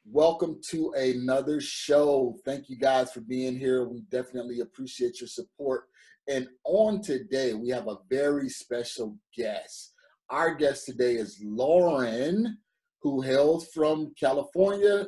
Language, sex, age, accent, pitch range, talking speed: English, male, 30-49, American, 130-180 Hz, 130 wpm